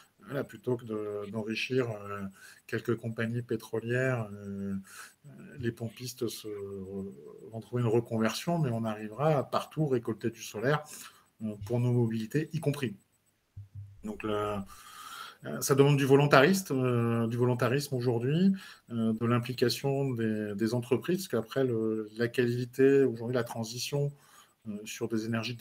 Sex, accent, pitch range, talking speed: male, French, 110-130 Hz, 120 wpm